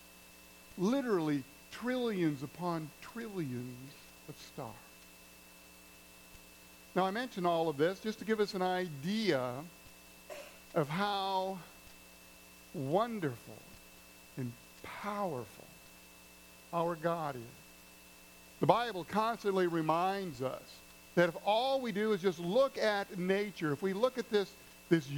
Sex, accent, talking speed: male, American, 110 wpm